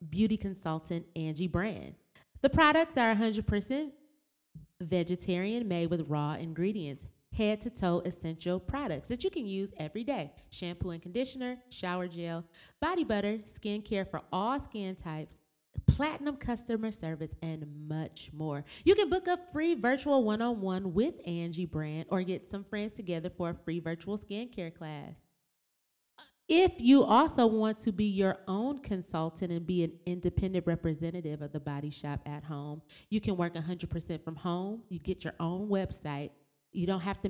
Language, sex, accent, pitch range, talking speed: English, female, American, 160-215 Hz, 160 wpm